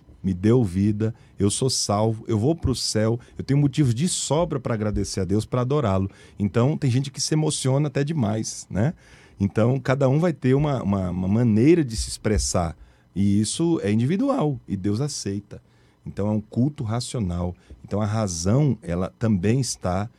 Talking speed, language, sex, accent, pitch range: 180 wpm, Portuguese, male, Brazilian, 100-130 Hz